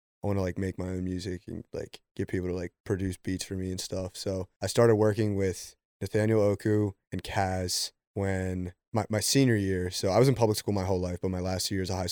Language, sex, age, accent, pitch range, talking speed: English, male, 20-39, American, 95-105 Hz, 250 wpm